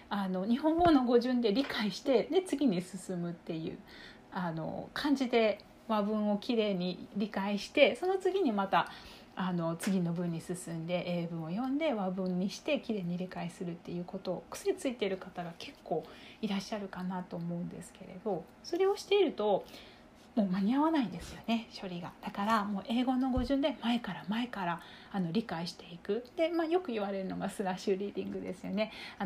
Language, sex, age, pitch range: Japanese, female, 30-49, 185-260 Hz